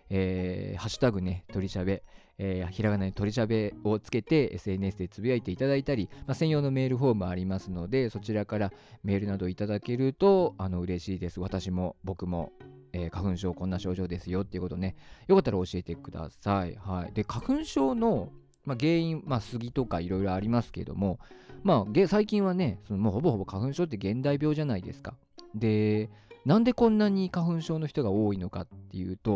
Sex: male